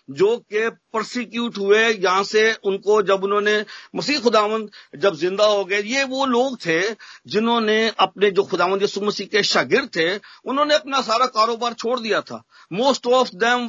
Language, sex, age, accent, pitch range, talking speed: Hindi, male, 50-69, native, 180-230 Hz, 165 wpm